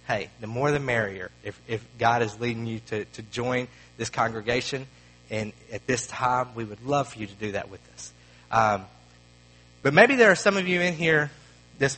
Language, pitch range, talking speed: English, 95-145 Hz, 205 wpm